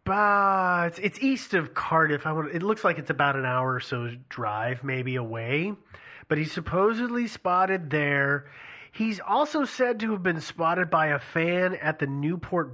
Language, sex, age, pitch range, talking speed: English, male, 30-49, 145-215 Hz, 190 wpm